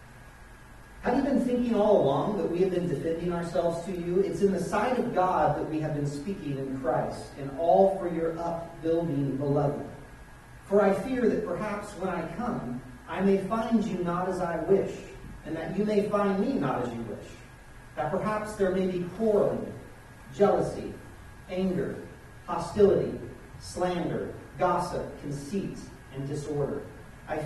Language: English